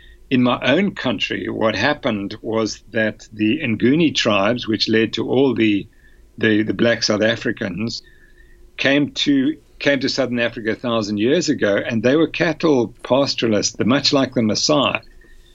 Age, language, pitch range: 60-79, English, 110-125 Hz